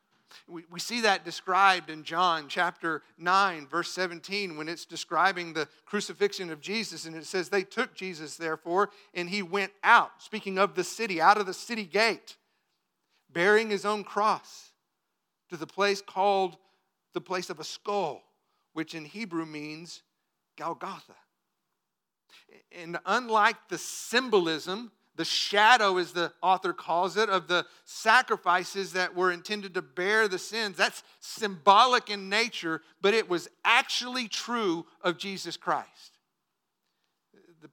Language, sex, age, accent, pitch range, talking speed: English, male, 50-69, American, 175-215 Hz, 140 wpm